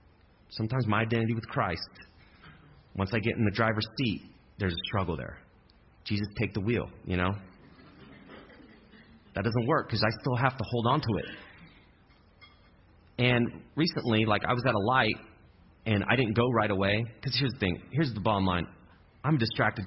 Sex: male